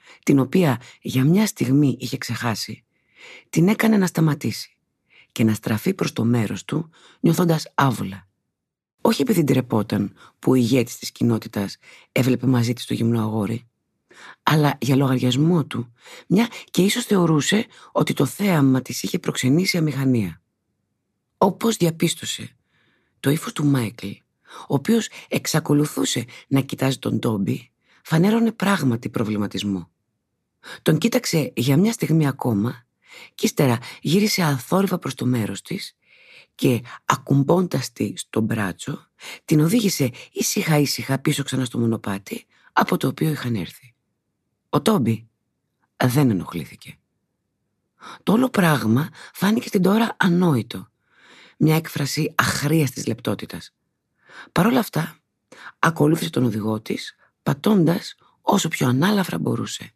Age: 50-69